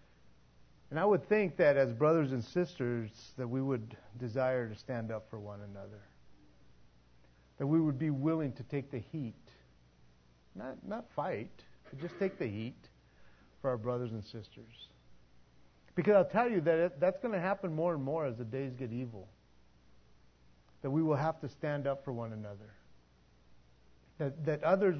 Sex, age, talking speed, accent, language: male, 40-59, 175 wpm, American, English